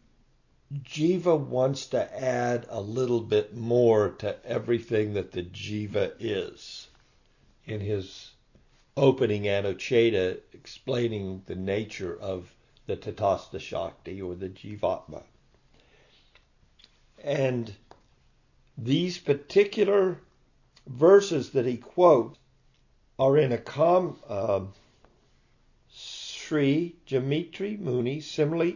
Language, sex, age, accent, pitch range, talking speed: English, male, 60-79, American, 115-145 Hz, 90 wpm